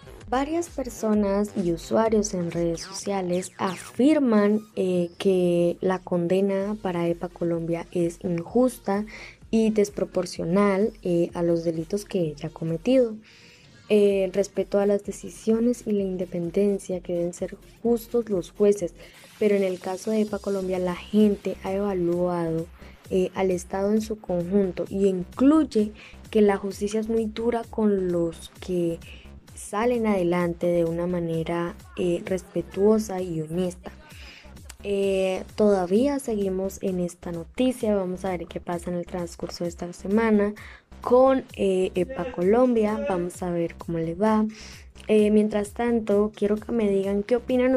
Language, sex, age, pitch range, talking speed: Spanish, female, 10-29, 175-210 Hz, 145 wpm